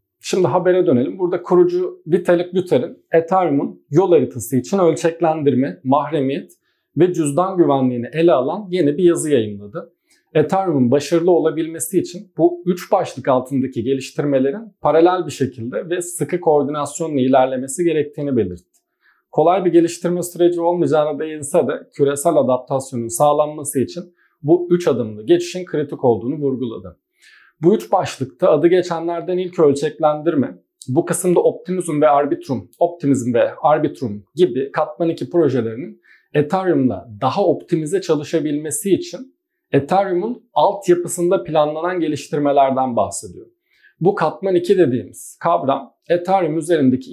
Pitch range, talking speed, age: 140-180 Hz, 120 wpm, 40-59